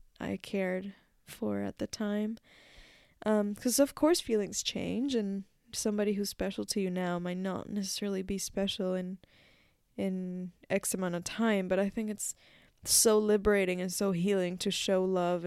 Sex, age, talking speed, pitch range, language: female, 10-29, 165 wpm, 180-210 Hz, English